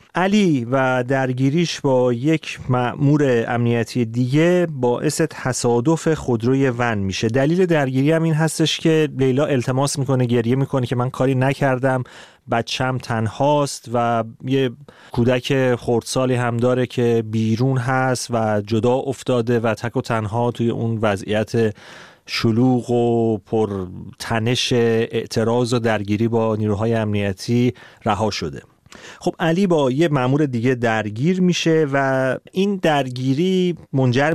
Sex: male